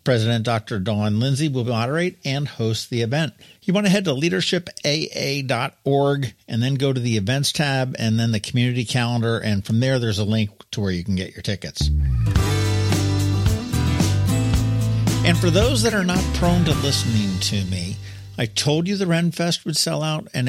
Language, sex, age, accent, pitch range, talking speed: English, male, 50-69, American, 105-140 Hz, 180 wpm